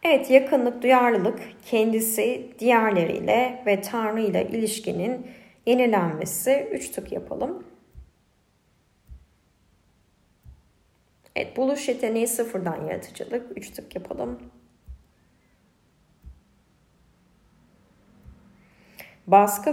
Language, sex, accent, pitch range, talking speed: Turkish, female, native, 170-225 Hz, 65 wpm